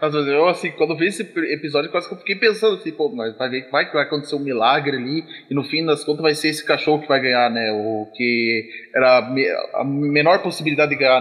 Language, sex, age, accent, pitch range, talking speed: Portuguese, male, 20-39, Brazilian, 140-175 Hz, 255 wpm